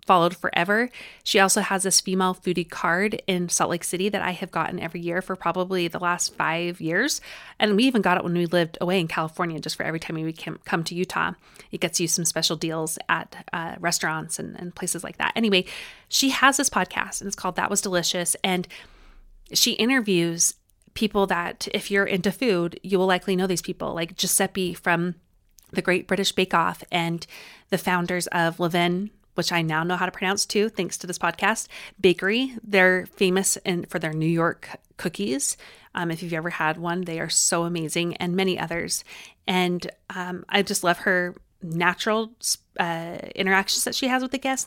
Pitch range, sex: 170-195 Hz, female